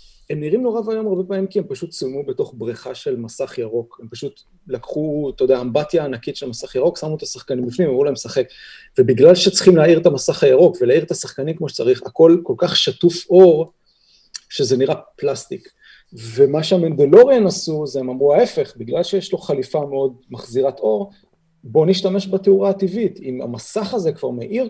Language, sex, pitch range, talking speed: Hebrew, male, 140-225 Hz, 180 wpm